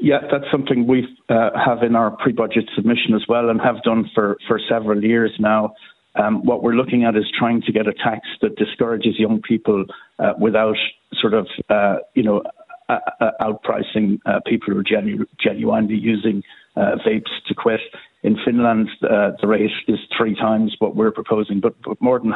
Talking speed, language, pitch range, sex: 180 wpm, English, 105-115 Hz, male